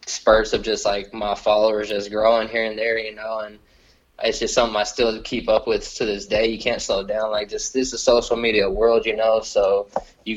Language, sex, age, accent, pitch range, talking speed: English, male, 20-39, American, 105-125 Hz, 235 wpm